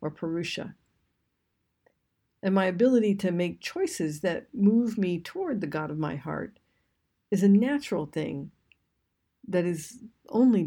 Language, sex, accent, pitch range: Japanese, female, American, 165-220 Hz